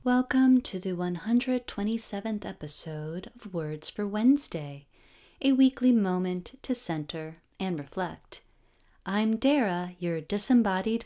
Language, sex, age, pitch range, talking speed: English, female, 30-49, 170-245 Hz, 110 wpm